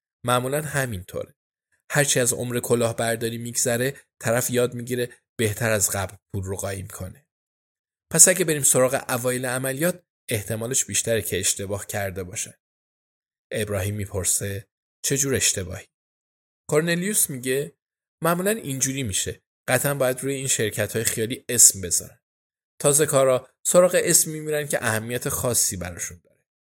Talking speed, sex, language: 130 wpm, male, Persian